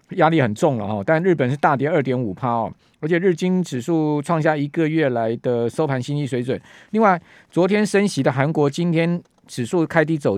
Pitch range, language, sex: 125-165 Hz, Chinese, male